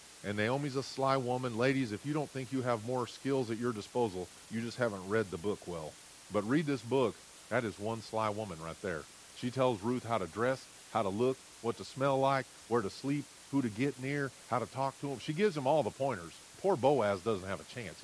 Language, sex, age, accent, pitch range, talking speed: English, male, 40-59, American, 110-140 Hz, 240 wpm